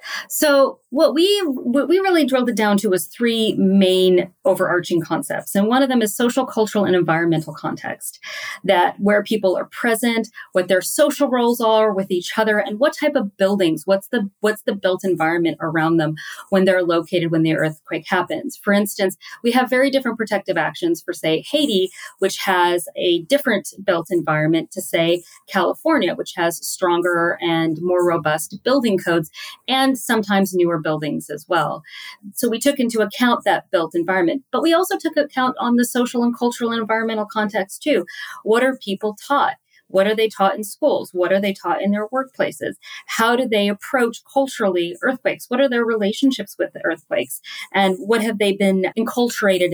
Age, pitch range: 40-59, 185-250 Hz